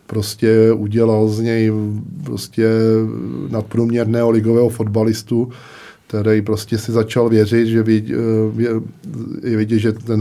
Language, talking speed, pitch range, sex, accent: Czech, 100 wpm, 105-115 Hz, male, native